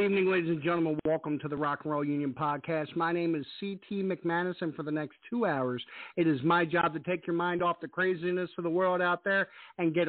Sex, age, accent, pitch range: male, 50-69, American, 160-205 Hz